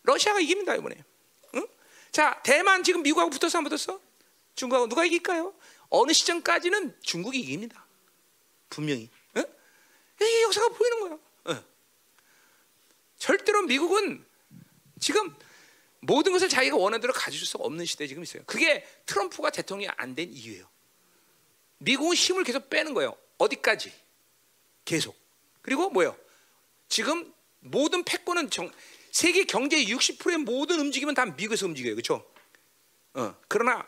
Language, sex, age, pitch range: Korean, male, 40-59, 245-395 Hz